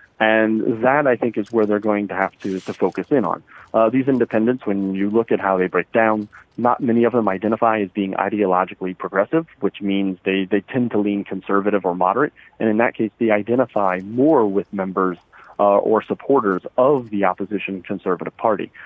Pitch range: 95-115 Hz